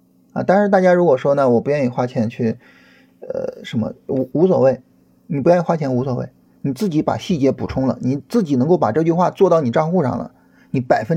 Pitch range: 130-195 Hz